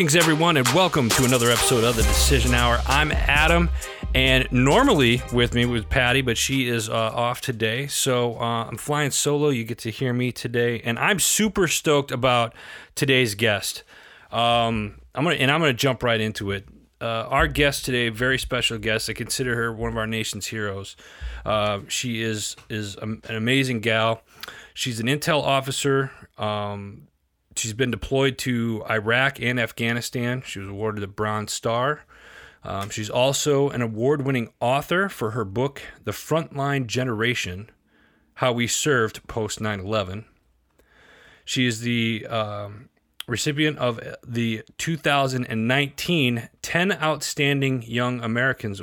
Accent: American